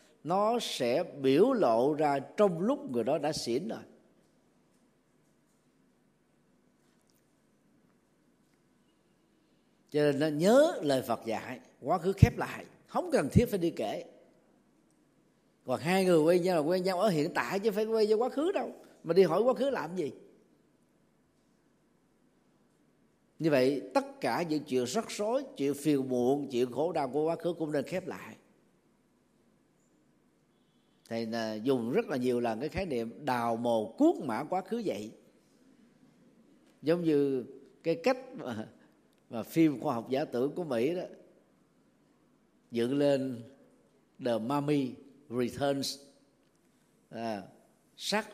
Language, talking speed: Vietnamese, 140 wpm